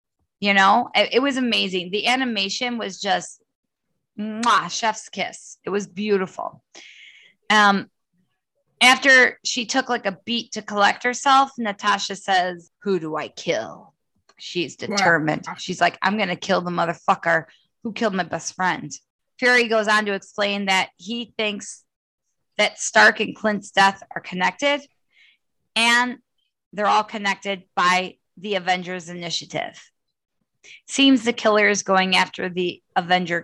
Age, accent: 20-39, American